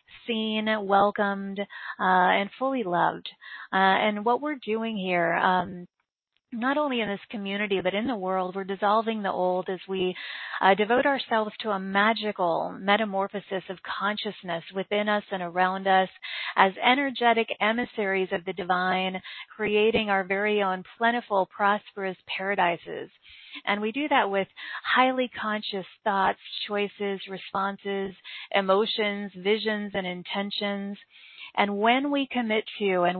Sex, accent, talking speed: female, American, 135 wpm